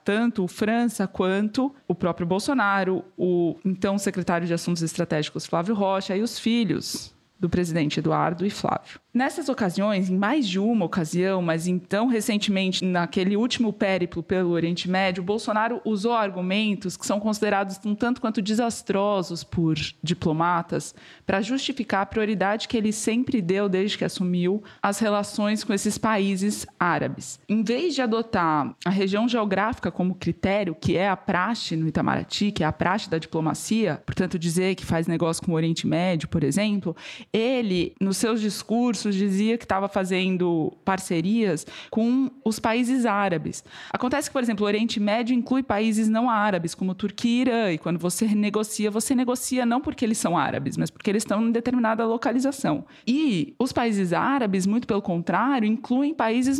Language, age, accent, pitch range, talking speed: Portuguese, 20-39, Brazilian, 185-235 Hz, 165 wpm